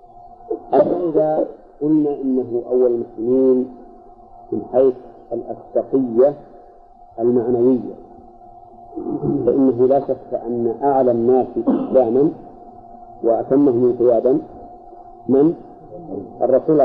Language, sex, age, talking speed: Arabic, male, 50-69, 70 wpm